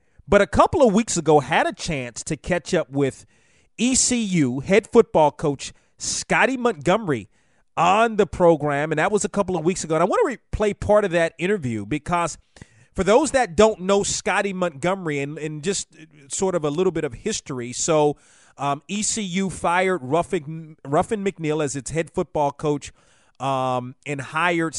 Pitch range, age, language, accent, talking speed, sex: 135-180 Hz, 30-49, English, American, 175 wpm, male